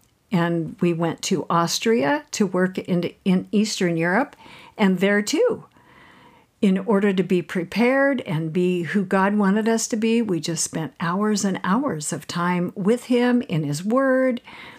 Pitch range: 175-245 Hz